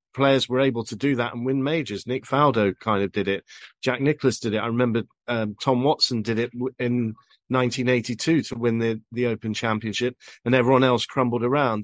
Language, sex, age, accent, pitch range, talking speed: English, male, 40-59, British, 110-130 Hz, 200 wpm